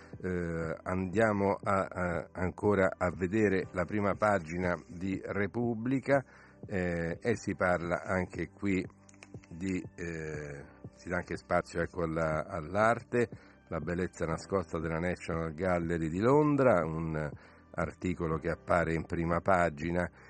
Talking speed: 110 wpm